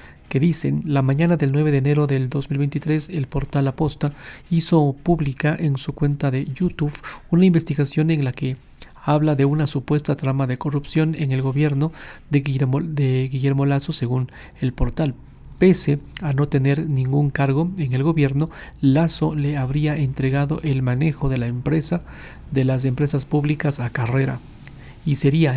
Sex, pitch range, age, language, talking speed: male, 130-150 Hz, 40-59, Spanish, 155 wpm